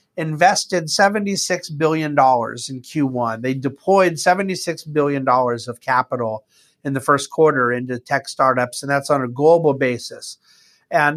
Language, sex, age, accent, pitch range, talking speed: English, male, 50-69, American, 130-165 Hz, 135 wpm